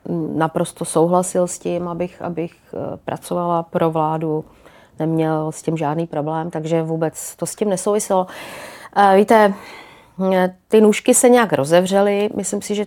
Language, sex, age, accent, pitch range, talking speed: Czech, female, 30-49, native, 170-195 Hz, 135 wpm